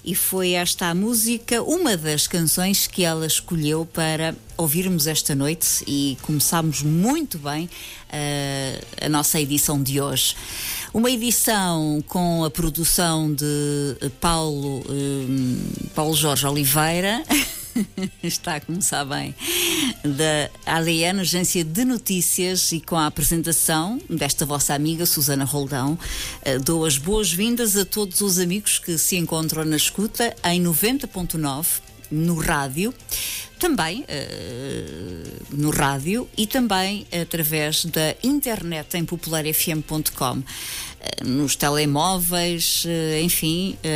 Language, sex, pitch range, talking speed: Portuguese, female, 150-180 Hz, 115 wpm